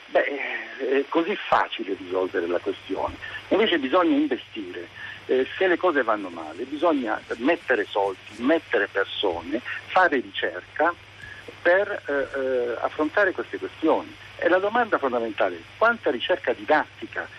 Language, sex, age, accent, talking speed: Italian, male, 60-79, native, 130 wpm